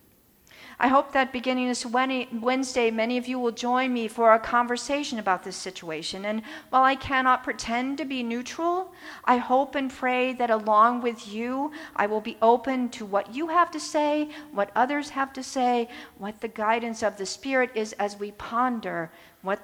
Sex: female